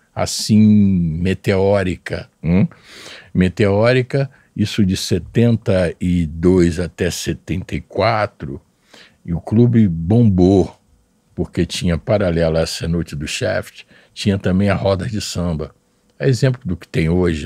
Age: 60-79